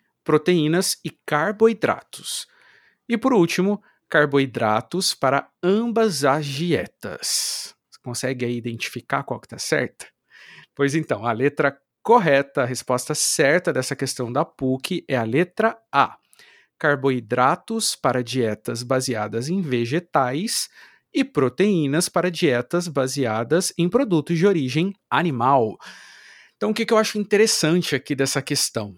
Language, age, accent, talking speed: Portuguese, 50-69, Brazilian, 125 wpm